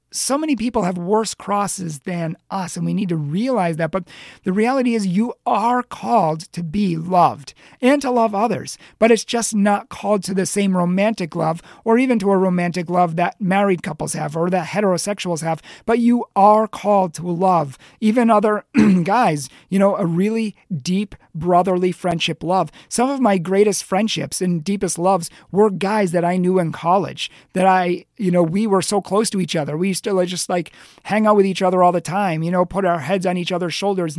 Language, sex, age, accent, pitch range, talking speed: English, male, 40-59, American, 175-205 Hz, 205 wpm